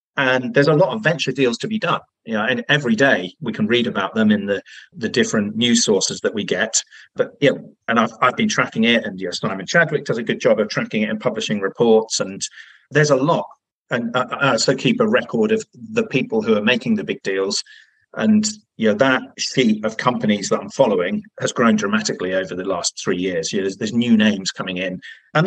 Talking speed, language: 240 wpm, English